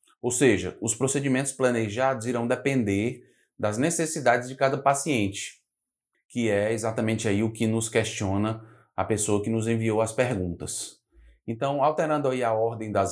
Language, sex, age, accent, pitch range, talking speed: Portuguese, male, 20-39, Brazilian, 110-140 Hz, 150 wpm